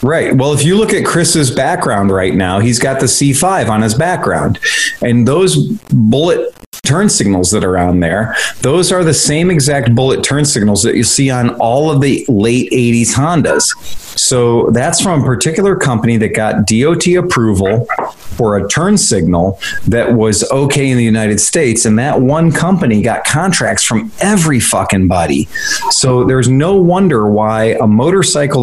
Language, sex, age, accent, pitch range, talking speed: English, male, 30-49, American, 110-150 Hz, 170 wpm